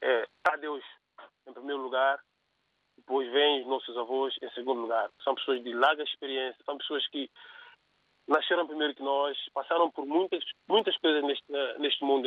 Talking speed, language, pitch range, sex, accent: 165 wpm, Portuguese, 135-175 Hz, male, Brazilian